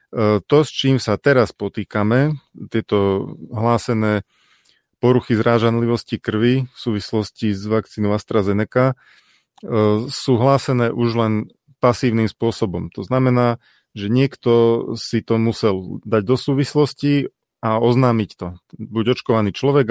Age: 30-49